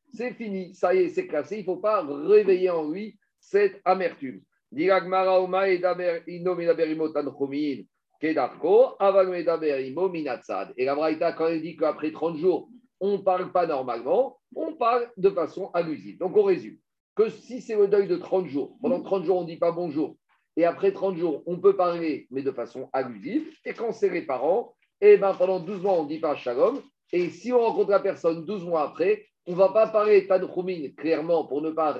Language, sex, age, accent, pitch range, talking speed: French, male, 50-69, French, 170-245 Hz, 185 wpm